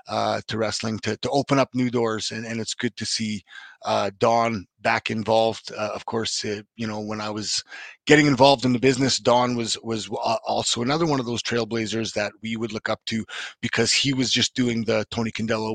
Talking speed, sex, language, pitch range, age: 215 wpm, male, English, 110-130 Hz, 30-49